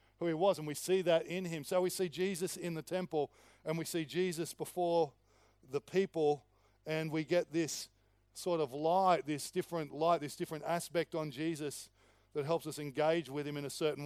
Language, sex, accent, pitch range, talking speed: English, male, Australian, 120-165 Hz, 200 wpm